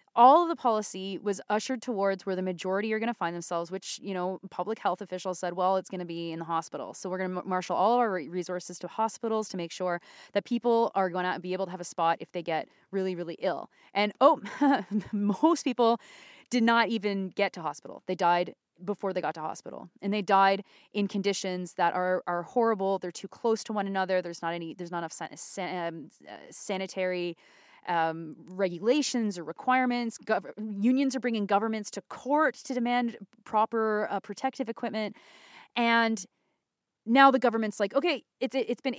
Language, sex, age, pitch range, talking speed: English, female, 20-39, 185-235 Hz, 195 wpm